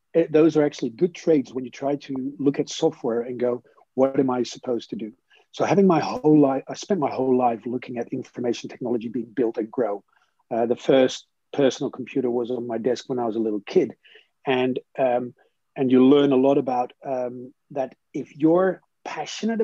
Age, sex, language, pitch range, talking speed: 40-59, male, English, 130-160 Hz, 200 wpm